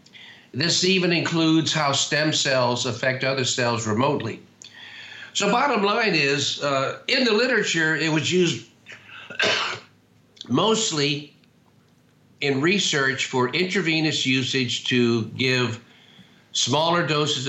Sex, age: male, 50-69